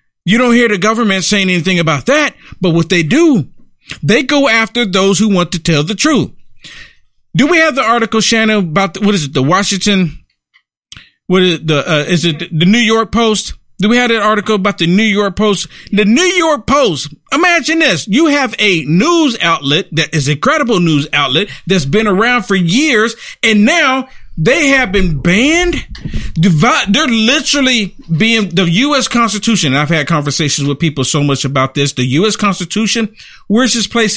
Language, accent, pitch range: English, American, 160-225 Hz